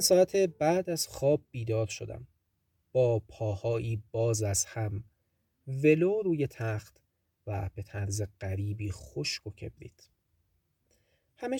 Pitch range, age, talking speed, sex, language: 100-140 Hz, 30-49, 110 wpm, male, Persian